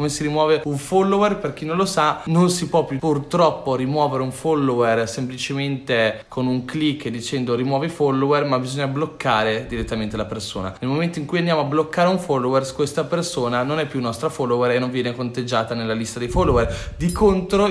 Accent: native